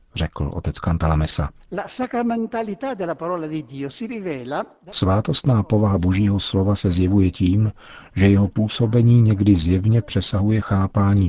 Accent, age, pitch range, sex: native, 50-69, 85-110 Hz, male